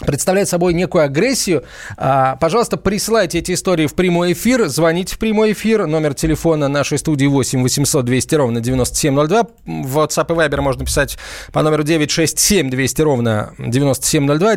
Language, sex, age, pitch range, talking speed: Russian, male, 20-39, 130-175 Hz, 150 wpm